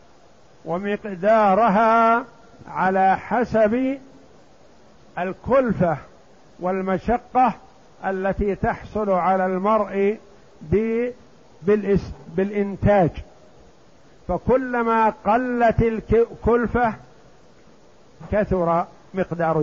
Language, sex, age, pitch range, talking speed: Arabic, male, 50-69, 170-215 Hz, 45 wpm